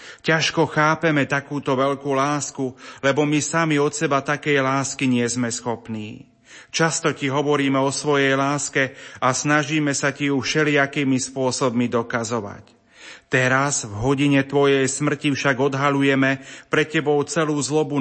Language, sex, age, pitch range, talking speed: Slovak, male, 30-49, 135-150 Hz, 135 wpm